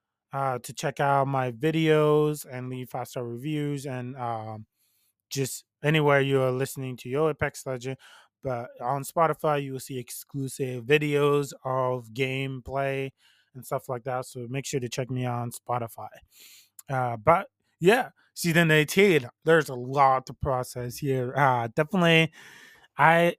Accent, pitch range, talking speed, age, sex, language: American, 130-155 Hz, 150 wpm, 20-39, male, English